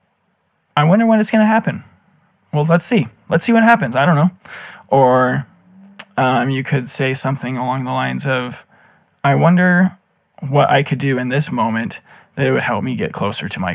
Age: 20-39